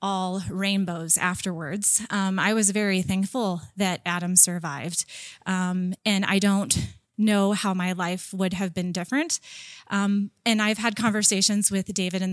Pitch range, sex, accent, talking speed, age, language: 180-205 Hz, female, American, 150 wpm, 30-49, English